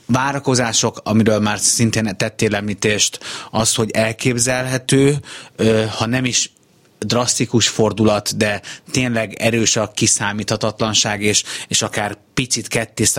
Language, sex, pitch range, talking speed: Hungarian, male, 105-120 Hz, 110 wpm